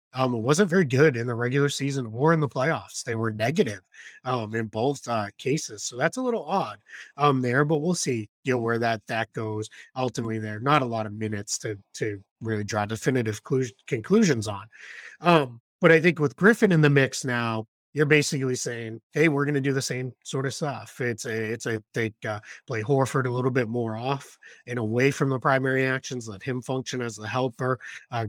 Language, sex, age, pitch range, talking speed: English, male, 20-39, 115-140 Hz, 210 wpm